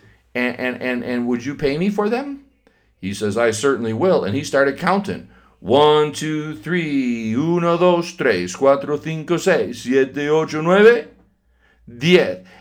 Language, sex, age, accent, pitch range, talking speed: English, male, 50-69, American, 105-145 Hz, 150 wpm